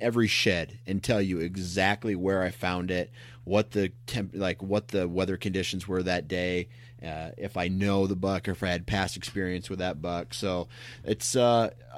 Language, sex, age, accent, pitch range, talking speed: English, male, 30-49, American, 95-115 Hz, 195 wpm